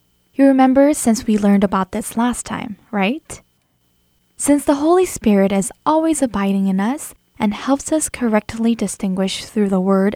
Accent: American